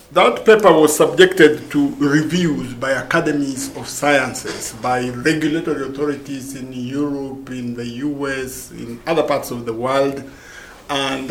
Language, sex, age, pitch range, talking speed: English, male, 50-69, 125-155 Hz, 135 wpm